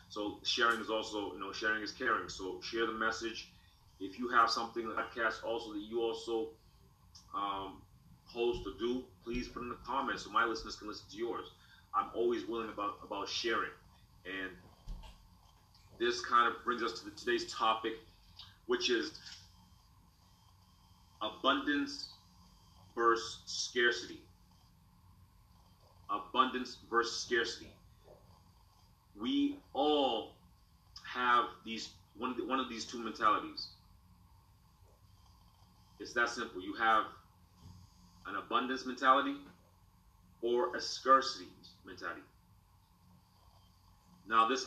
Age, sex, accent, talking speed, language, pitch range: 30-49, male, American, 120 wpm, English, 90-120 Hz